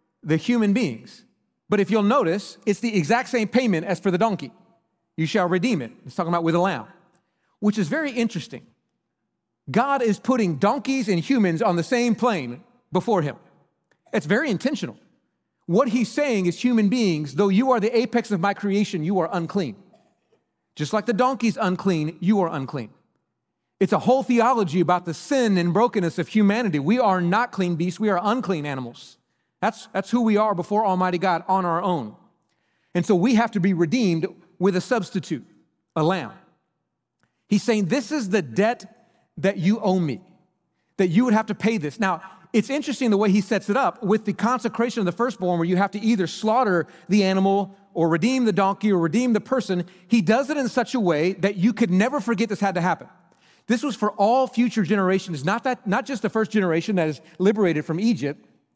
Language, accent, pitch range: English, American, 180-230 Hz